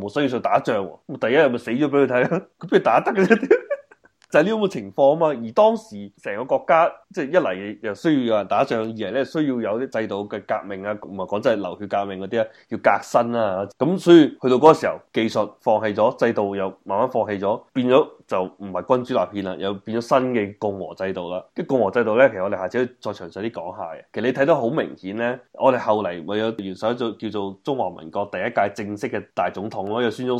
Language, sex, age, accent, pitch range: Chinese, male, 20-39, native, 100-125 Hz